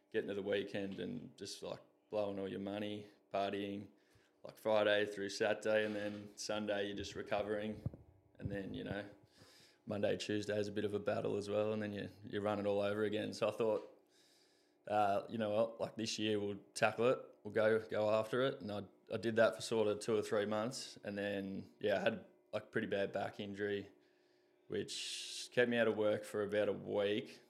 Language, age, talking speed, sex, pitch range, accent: English, 20-39, 205 wpm, male, 100-110 Hz, Australian